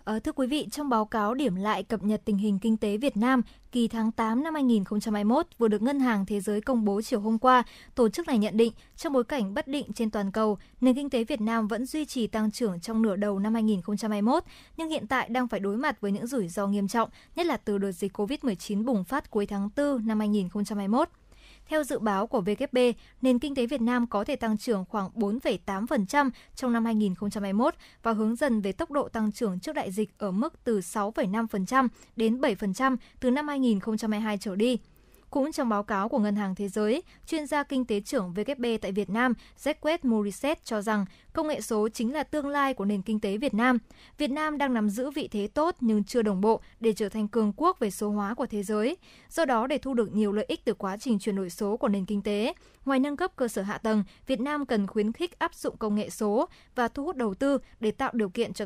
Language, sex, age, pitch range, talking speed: Vietnamese, male, 20-39, 210-265 Hz, 235 wpm